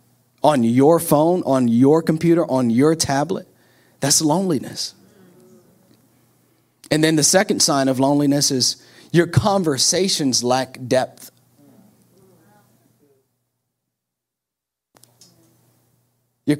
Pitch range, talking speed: 150-180 Hz, 85 wpm